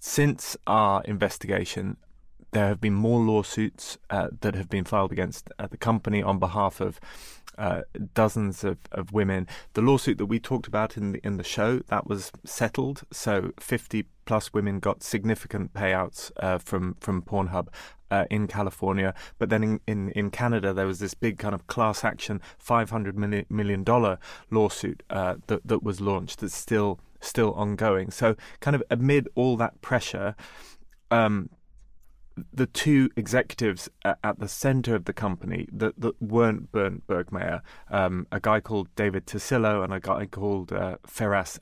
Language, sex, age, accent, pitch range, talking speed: English, male, 30-49, British, 100-115 Hz, 165 wpm